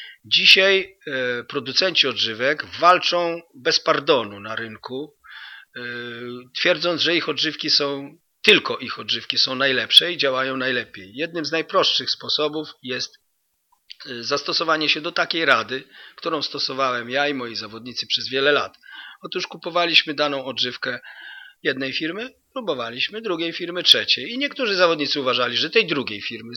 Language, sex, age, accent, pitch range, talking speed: Polish, male, 40-59, native, 130-175 Hz, 130 wpm